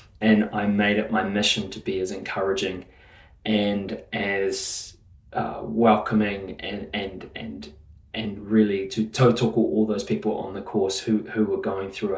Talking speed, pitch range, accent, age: 160 wpm, 100-115 Hz, Australian, 20-39